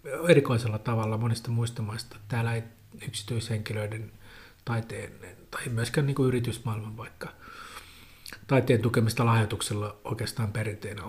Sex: male